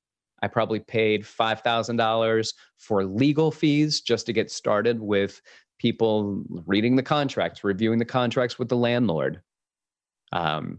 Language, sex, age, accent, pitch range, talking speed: English, male, 30-49, American, 105-125 Hz, 130 wpm